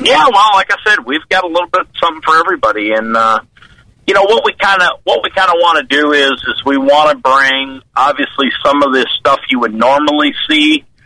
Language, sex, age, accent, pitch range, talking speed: English, male, 50-69, American, 120-150 Hz, 240 wpm